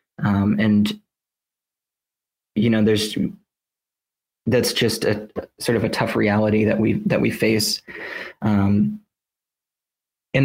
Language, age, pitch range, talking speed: English, 20-39, 105-115 Hz, 115 wpm